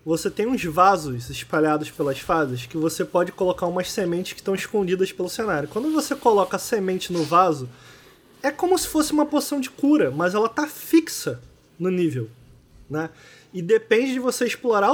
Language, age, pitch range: Portuguese, 20-39, 180-250 Hz